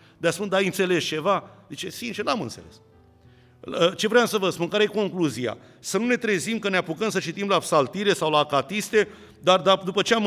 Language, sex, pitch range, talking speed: Romanian, male, 155-205 Hz, 205 wpm